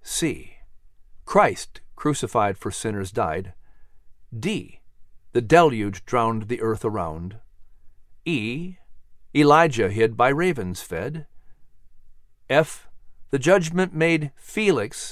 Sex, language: male, English